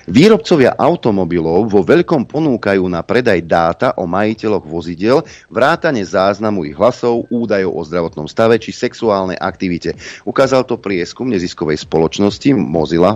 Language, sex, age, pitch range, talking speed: Slovak, male, 40-59, 95-125 Hz, 130 wpm